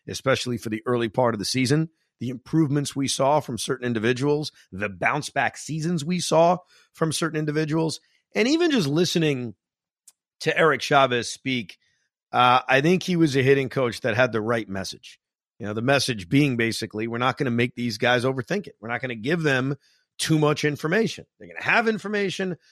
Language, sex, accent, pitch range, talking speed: English, male, American, 125-175 Hz, 195 wpm